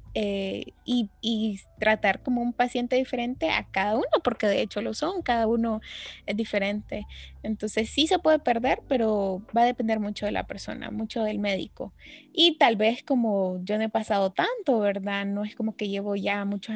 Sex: female